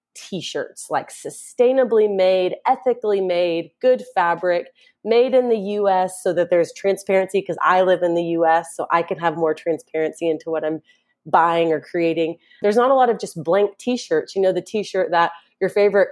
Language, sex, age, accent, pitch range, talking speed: English, female, 30-49, American, 170-210 Hz, 180 wpm